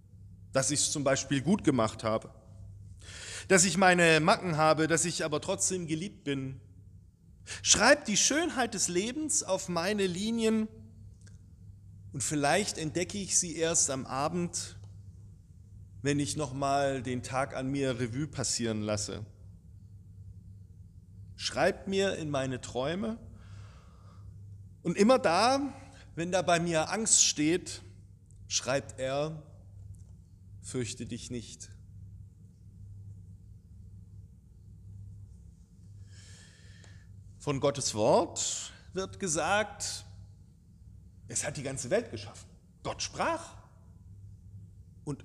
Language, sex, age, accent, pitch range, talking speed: German, male, 40-59, German, 95-160 Hz, 105 wpm